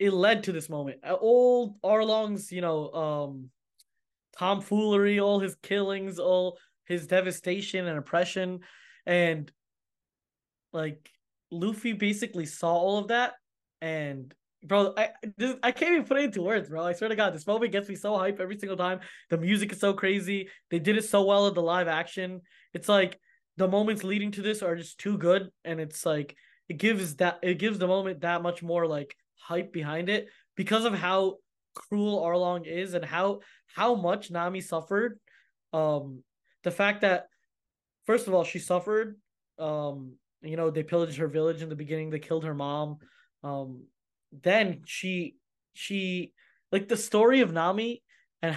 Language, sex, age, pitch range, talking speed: English, male, 20-39, 165-200 Hz, 170 wpm